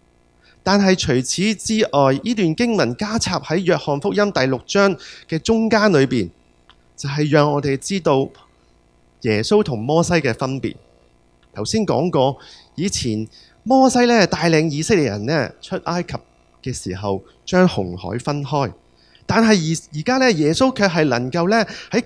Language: Chinese